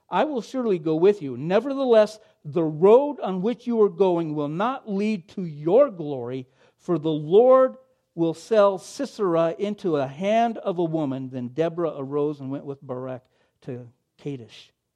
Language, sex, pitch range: English, male, 165-255 Hz